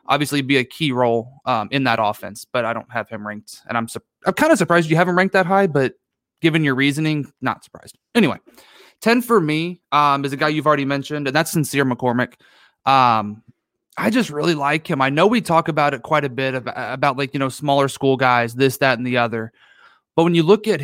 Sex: male